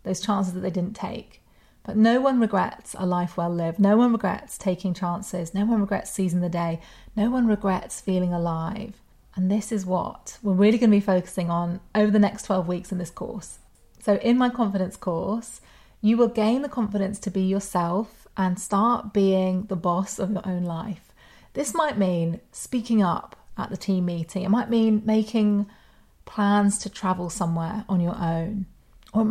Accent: British